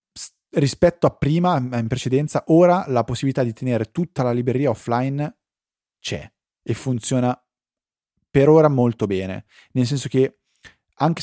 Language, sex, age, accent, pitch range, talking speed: Italian, male, 20-39, native, 110-145 Hz, 135 wpm